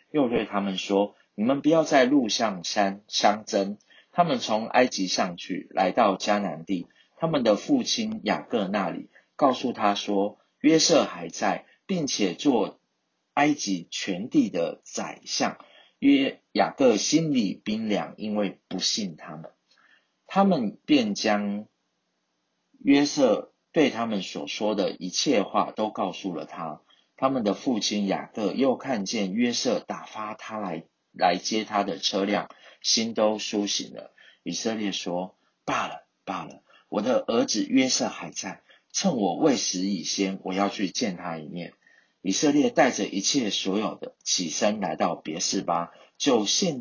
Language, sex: Chinese, male